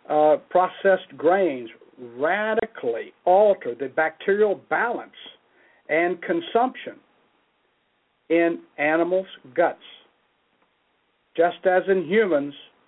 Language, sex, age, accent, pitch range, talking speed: English, male, 60-79, American, 160-225 Hz, 80 wpm